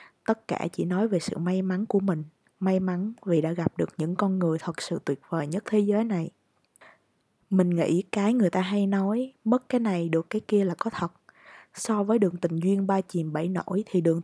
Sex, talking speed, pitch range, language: female, 230 wpm, 170-205 Hz, Vietnamese